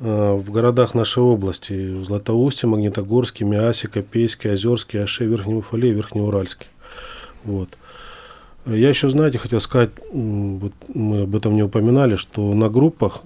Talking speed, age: 120 wpm, 20-39